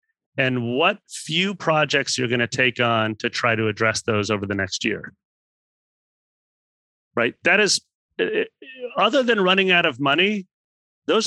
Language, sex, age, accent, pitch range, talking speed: English, male, 30-49, American, 115-155 Hz, 150 wpm